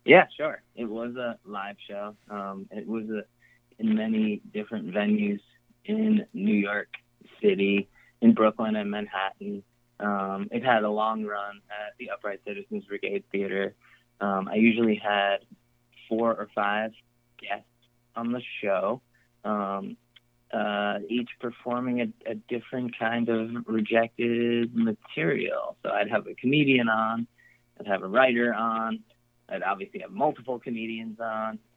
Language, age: English, 20-39